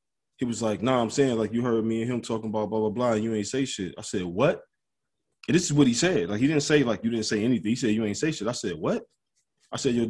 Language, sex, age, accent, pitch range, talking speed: English, male, 20-39, American, 110-130 Hz, 310 wpm